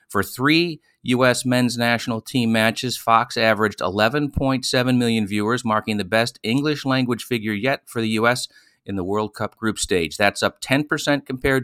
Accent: American